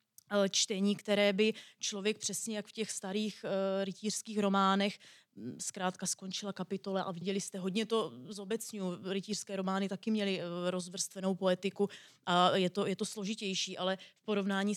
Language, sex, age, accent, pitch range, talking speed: Czech, female, 20-39, native, 185-205 Hz, 145 wpm